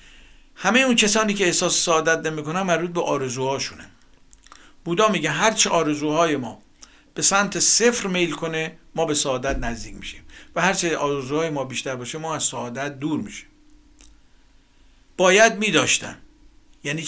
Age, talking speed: 50-69, 140 wpm